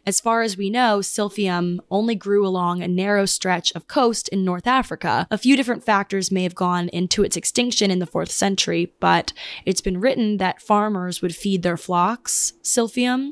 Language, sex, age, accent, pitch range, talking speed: English, female, 20-39, American, 180-215 Hz, 190 wpm